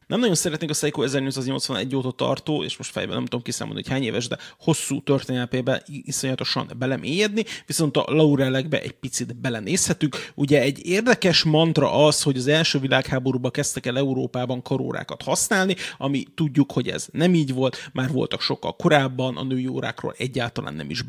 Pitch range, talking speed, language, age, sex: 135-180 Hz, 170 wpm, Hungarian, 30-49, male